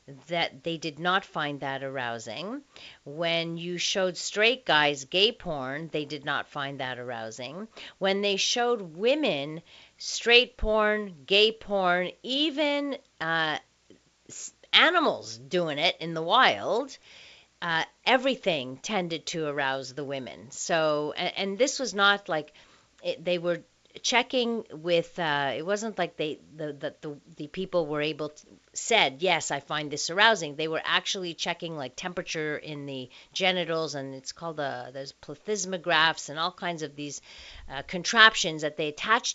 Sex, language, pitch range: female, English, 150-195 Hz